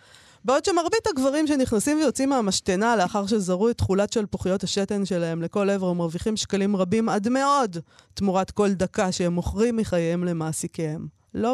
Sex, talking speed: female, 150 wpm